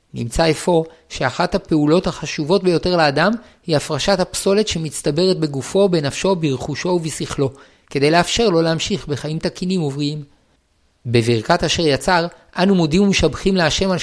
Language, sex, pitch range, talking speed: Hebrew, male, 150-185 Hz, 130 wpm